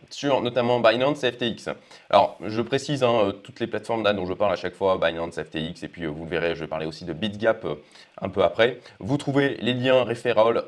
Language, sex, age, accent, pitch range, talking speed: French, male, 20-39, French, 100-140 Hz, 220 wpm